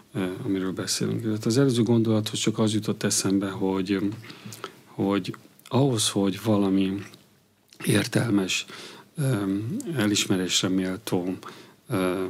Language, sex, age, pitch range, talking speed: Hungarian, male, 40-59, 95-110 Hz, 95 wpm